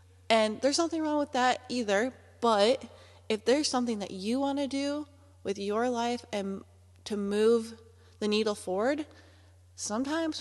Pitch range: 190-235 Hz